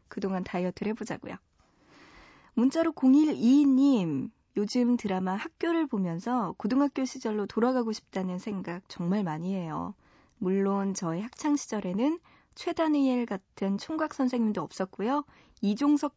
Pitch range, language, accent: 195-265 Hz, Korean, native